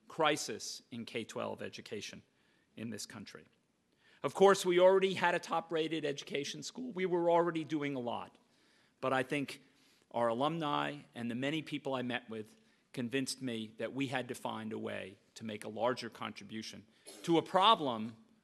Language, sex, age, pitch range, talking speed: English, male, 40-59, 120-185 Hz, 165 wpm